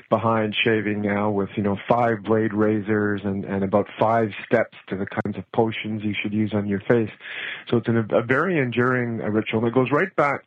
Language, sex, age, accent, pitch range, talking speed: English, male, 40-59, American, 105-120 Hz, 200 wpm